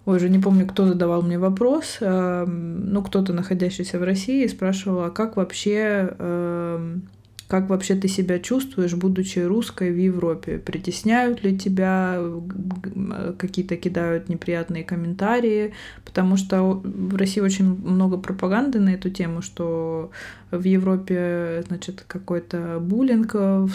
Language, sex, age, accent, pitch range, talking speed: Russian, female, 20-39, native, 175-195 Hz, 125 wpm